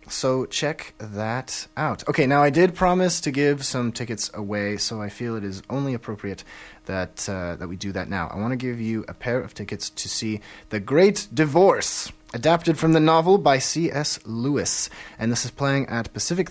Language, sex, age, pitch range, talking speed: English, male, 30-49, 110-150 Hz, 200 wpm